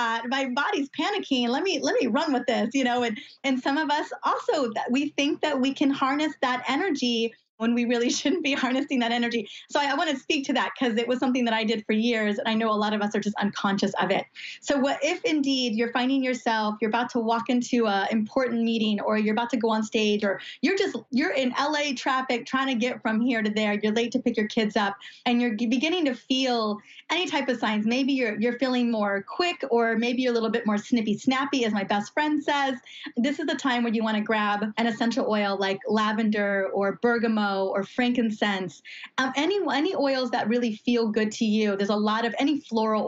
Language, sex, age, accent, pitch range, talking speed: English, female, 20-39, American, 215-270 Hz, 235 wpm